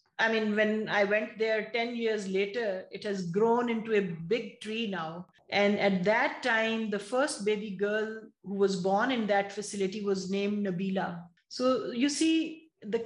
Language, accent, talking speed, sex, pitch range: English, Indian, 175 wpm, female, 195-230 Hz